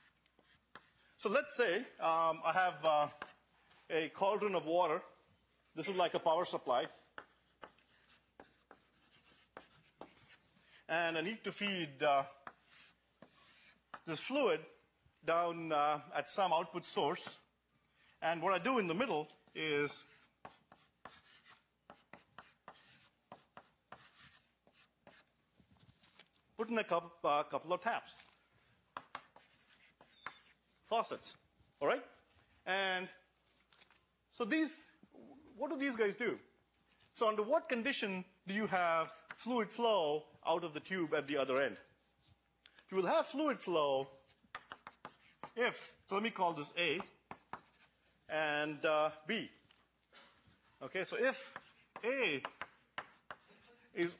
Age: 50-69